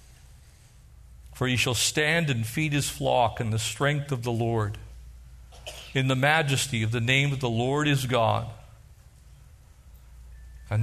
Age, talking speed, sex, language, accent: 50-69, 145 wpm, male, English, American